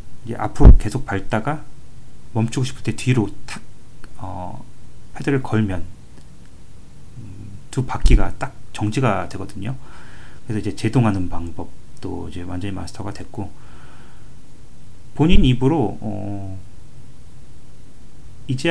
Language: Korean